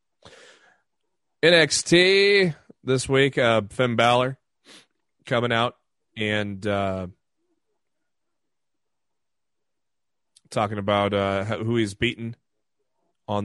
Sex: male